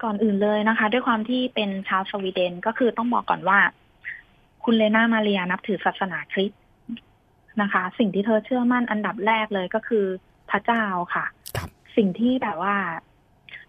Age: 20-39